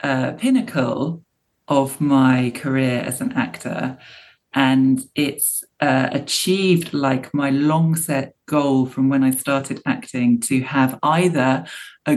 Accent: British